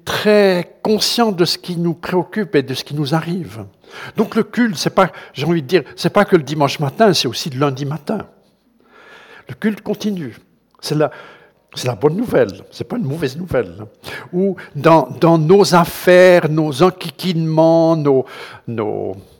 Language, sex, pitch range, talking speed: French, male, 135-195 Hz, 175 wpm